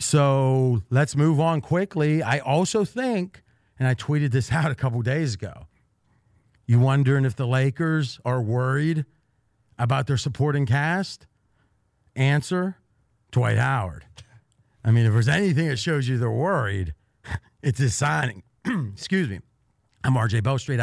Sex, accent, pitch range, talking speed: male, American, 110-140 Hz, 145 wpm